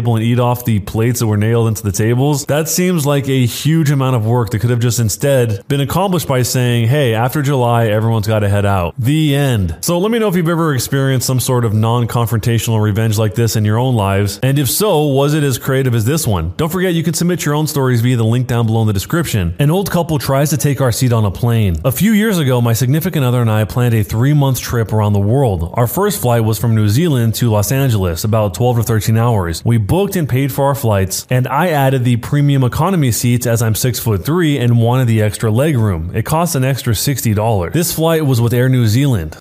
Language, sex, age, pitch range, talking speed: English, male, 20-39, 115-145 Hz, 240 wpm